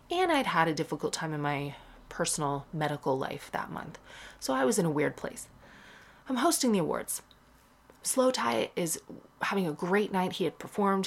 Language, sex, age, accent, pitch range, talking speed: English, female, 30-49, American, 155-210 Hz, 185 wpm